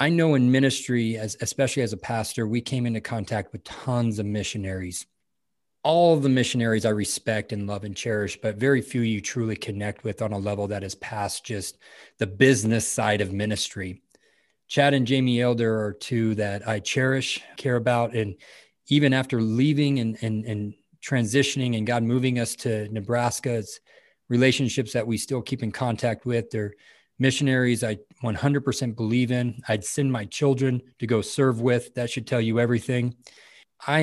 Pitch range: 110-130 Hz